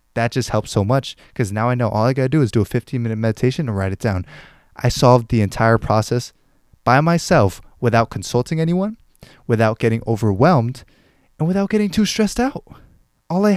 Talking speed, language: 200 wpm, English